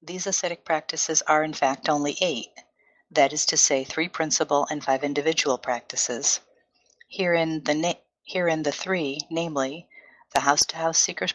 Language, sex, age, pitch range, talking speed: English, female, 50-69, 145-175 Hz, 160 wpm